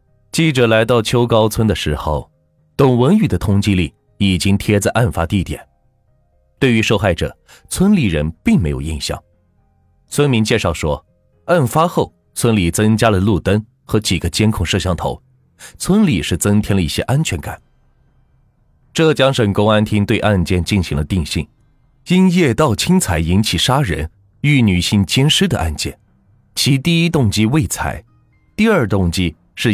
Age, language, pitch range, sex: 30-49, Chinese, 90-135 Hz, male